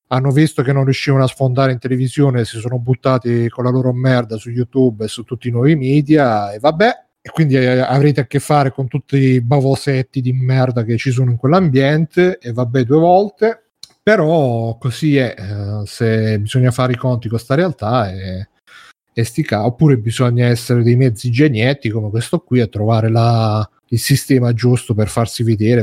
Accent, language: native, Italian